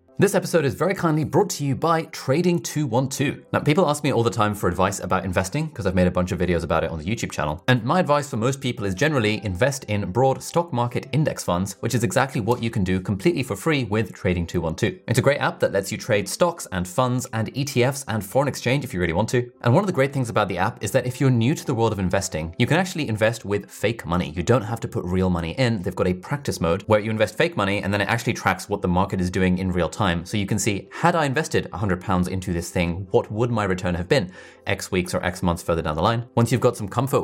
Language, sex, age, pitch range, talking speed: English, male, 20-39, 90-125 Hz, 275 wpm